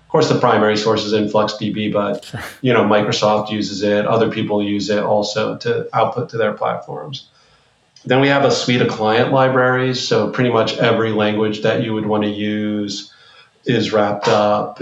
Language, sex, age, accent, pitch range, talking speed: English, male, 40-59, American, 105-125 Hz, 180 wpm